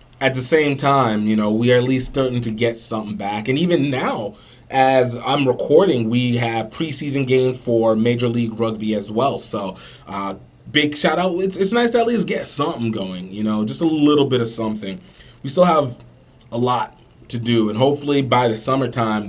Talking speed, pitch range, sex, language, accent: 200 wpm, 110-150 Hz, male, English, American